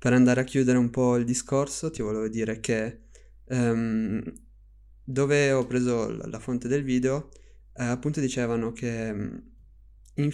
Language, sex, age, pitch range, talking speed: Italian, male, 20-39, 115-135 Hz, 155 wpm